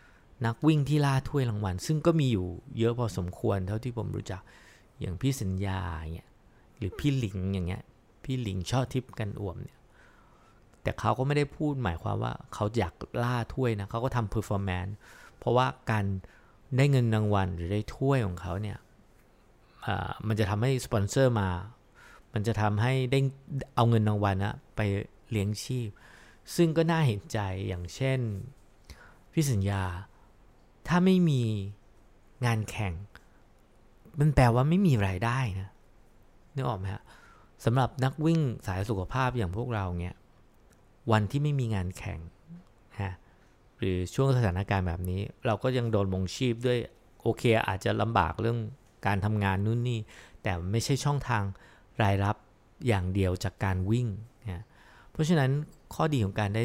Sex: male